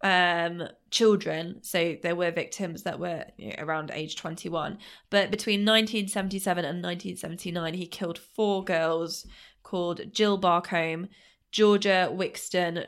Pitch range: 175-205 Hz